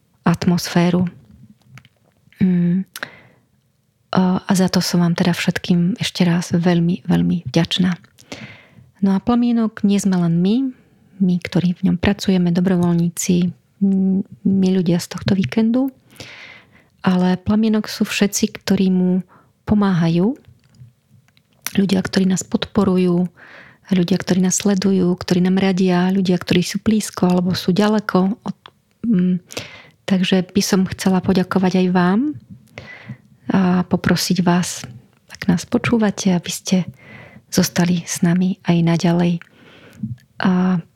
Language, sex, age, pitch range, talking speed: Slovak, female, 30-49, 175-195 Hz, 115 wpm